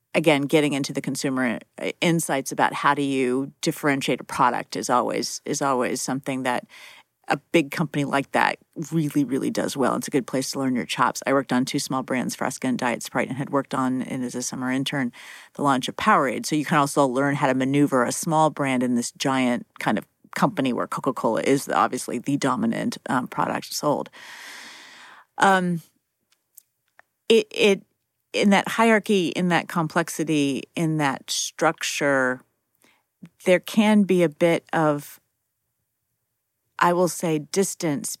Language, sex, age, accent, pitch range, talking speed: English, female, 40-59, American, 135-170 Hz, 170 wpm